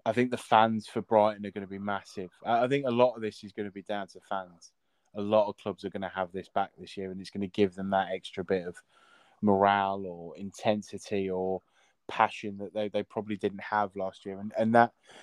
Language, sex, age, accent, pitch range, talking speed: English, male, 20-39, British, 95-110 Hz, 245 wpm